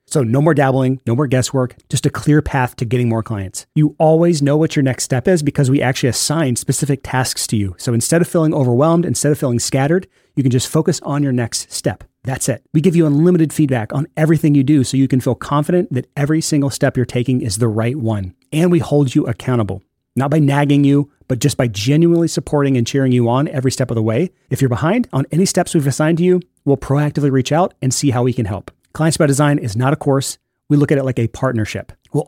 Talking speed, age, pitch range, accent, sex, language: 245 wpm, 30-49, 125-150 Hz, American, male, English